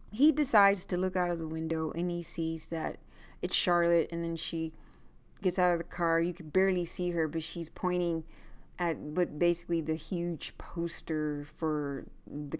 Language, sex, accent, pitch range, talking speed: English, female, American, 160-185 Hz, 180 wpm